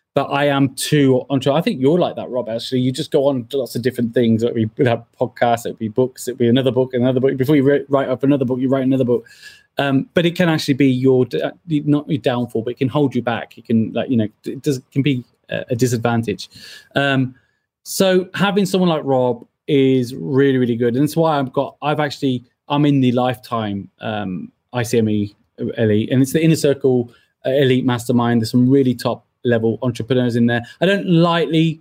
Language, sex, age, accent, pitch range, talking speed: English, male, 20-39, British, 120-150 Hz, 215 wpm